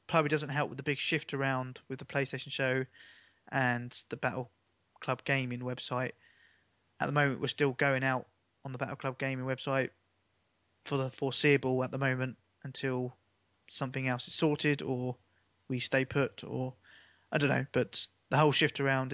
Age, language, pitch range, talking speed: 20-39, English, 100-135 Hz, 170 wpm